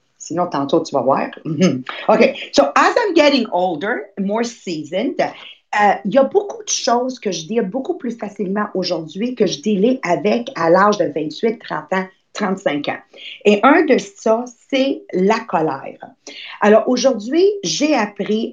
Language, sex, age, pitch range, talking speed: English, female, 50-69, 190-250 Hz, 160 wpm